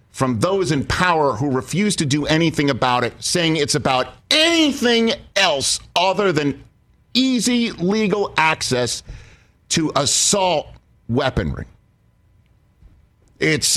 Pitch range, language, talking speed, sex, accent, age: 125-195 Hz, English, 110 wpm, male, American, 50-69